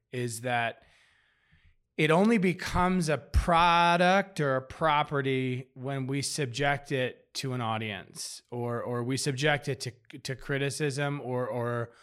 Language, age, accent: English, 30-49, American